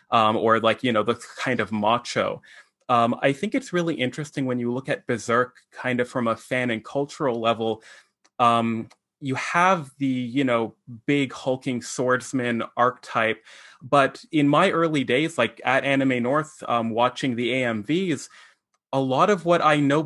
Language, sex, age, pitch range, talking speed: English, male, 20-39, 120-145 Hz, 170 wpm